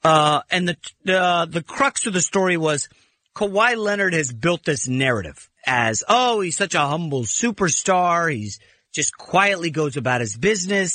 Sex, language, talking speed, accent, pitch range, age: male, English, 165 wpm, American, 145-205 Hz, 40-59